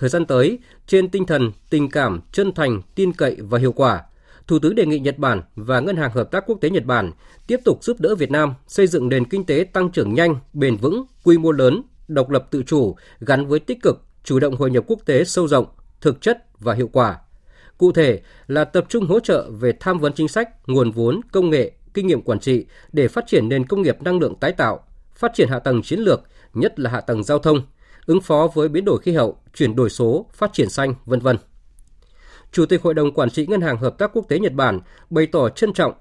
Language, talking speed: Vietnamese, 240 wpm